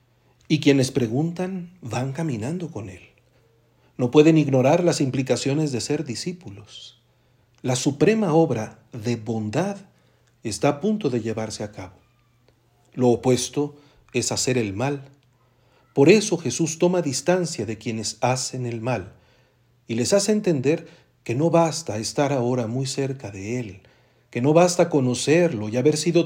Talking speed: 145 wpm